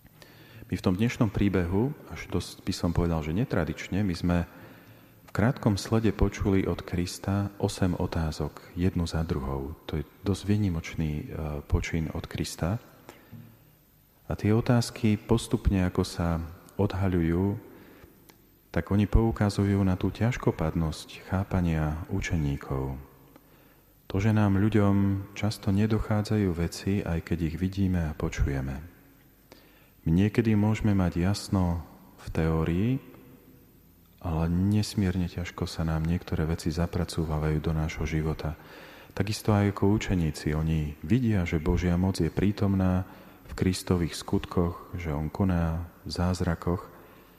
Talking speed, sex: 120 wpm, male